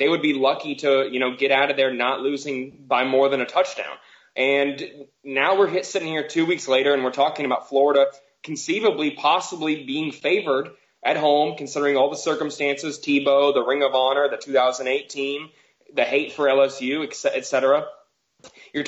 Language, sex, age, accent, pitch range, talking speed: English, male, 20-39, American, 135-155 Hz, 180 wpm